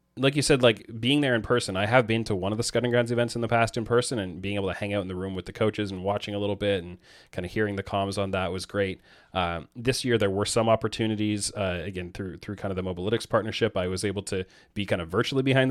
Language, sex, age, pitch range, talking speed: English, male, 30-49, 95-115 Hz, 285 wpm